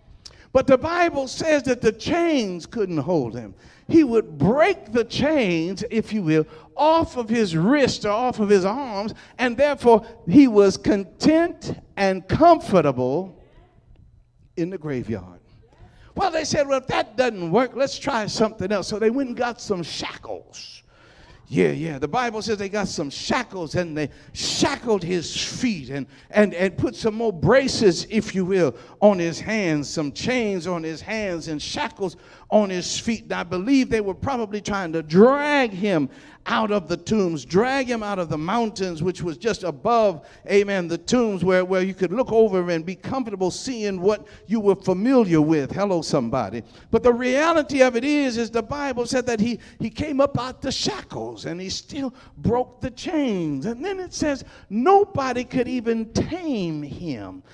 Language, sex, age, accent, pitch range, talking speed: English, male, 60-79, American, 170-250 Hz, 175 wpm